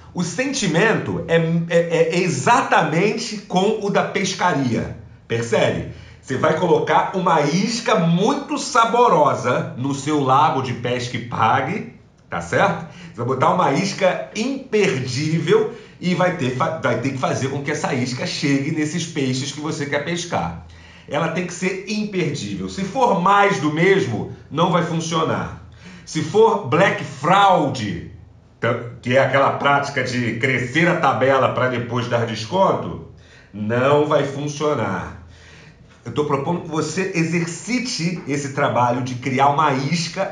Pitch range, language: 125-175 Hz, Portuguese